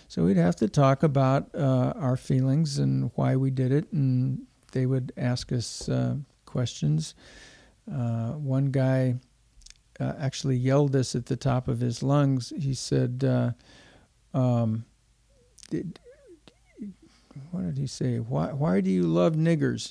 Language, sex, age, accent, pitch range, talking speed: English, male, 50-69, American, 125-155 Hz, 150 wpm